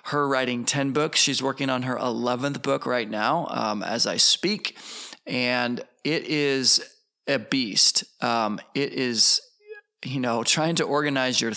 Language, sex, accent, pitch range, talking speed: English, male, American, 130-160 Hz, 155 wpm